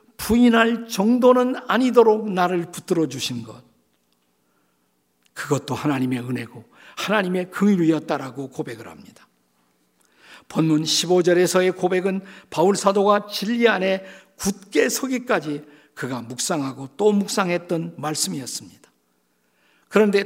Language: Korean